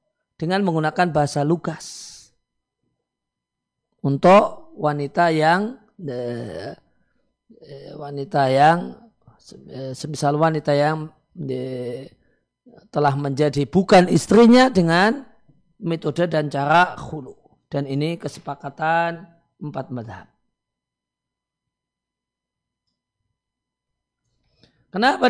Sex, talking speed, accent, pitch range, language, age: male, 60 wpm, native, 150-195 Hz, Indonesian, 40-59